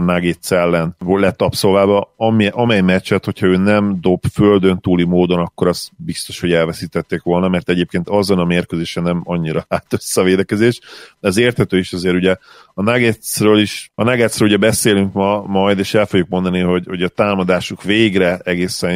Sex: male